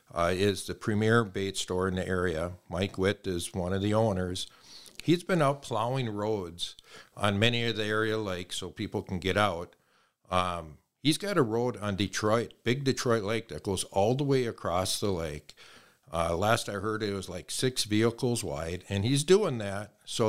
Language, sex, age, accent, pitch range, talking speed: English, male, 50-69, American, 95-125 Hz, 190 wpm